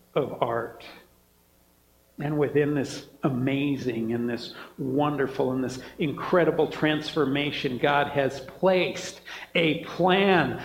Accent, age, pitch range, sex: American, 60-79, 145-200 Hz, male